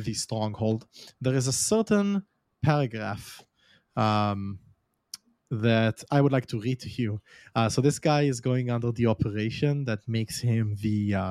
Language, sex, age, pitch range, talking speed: English, male, 30-49, 110-135 Hz, 160 wpm